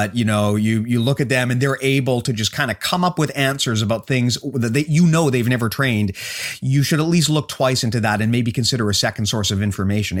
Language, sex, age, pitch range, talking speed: English, male, 30-49, 110-140 Hz, 260 wpm